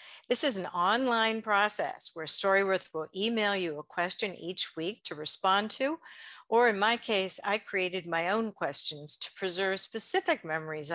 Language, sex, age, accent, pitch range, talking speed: English, female, 50-69, American, 165-225 Hz, 165 wpm